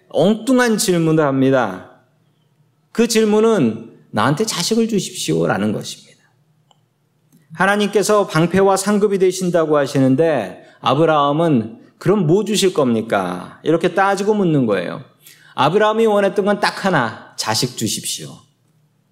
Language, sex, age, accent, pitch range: Korean, male, 40-59, native, 115-180 Hz